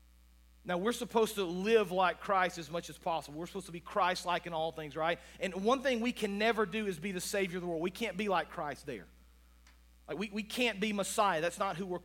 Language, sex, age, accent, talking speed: English, male, 40-59, American, 250 wpm